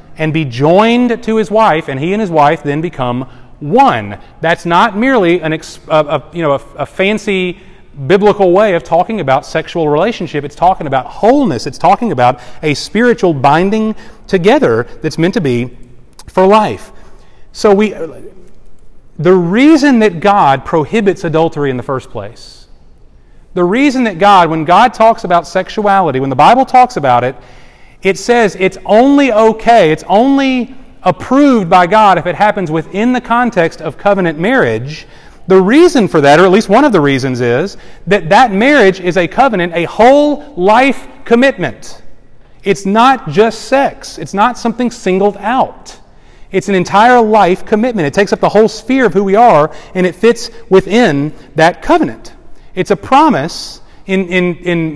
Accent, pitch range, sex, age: American, 160-225 Hz, male, 30-49